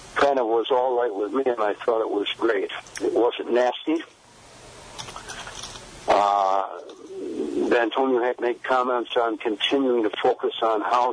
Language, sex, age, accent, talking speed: English, male, 60-79, American, 145 wpm